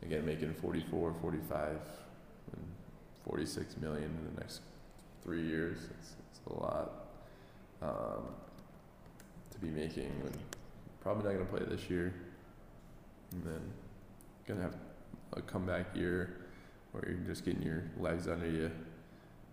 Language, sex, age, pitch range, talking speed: English, male, 20-39, 85-100 Hz, 125 wpm